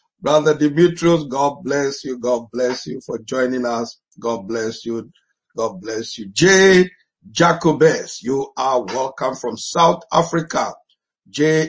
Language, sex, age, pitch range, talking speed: English, male, 50-69, 125-160 Hz, 135 wpm